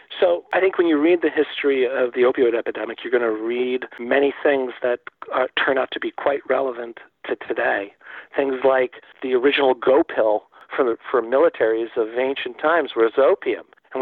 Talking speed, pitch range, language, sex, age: 185 wpm, 135-185 Hz, English, male, 50-69